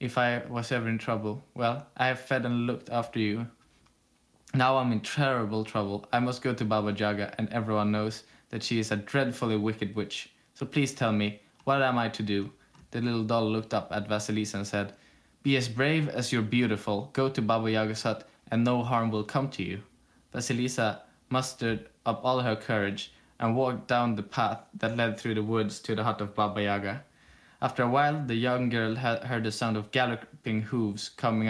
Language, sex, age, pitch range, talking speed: English, male, 20-39, 105-125 Hz, 200 wpm